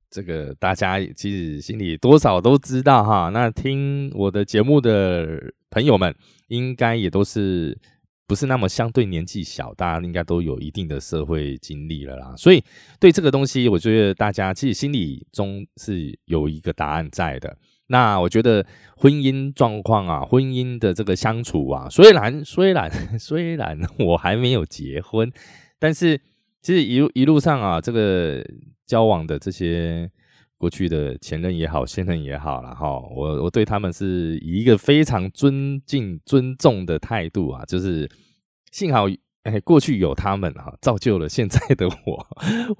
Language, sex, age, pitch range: Chinese, male, 20-39, 85-130 Hz